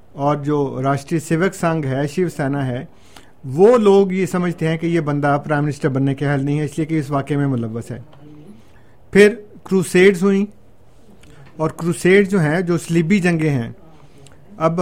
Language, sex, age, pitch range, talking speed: Urdu, male, 50-69, 140-170 Hz, 180 wpm